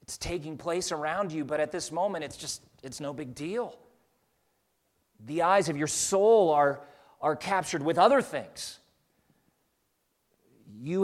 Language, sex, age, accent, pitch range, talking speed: English, male, 40-59, American, 125-170 Hz, 145 wpm